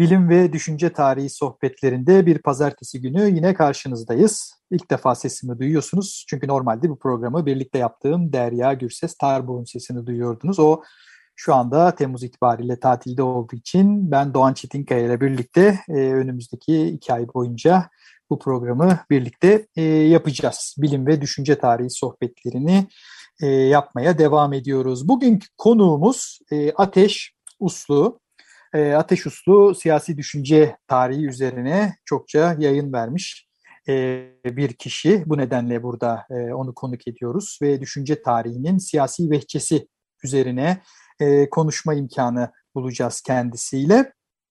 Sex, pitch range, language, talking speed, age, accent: male, 130-170 Hz, Turkish, 120 wpm, 50-69, native